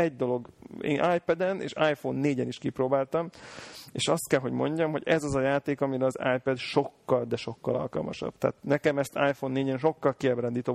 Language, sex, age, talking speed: Hungarian, male, 30-49, 185 wpm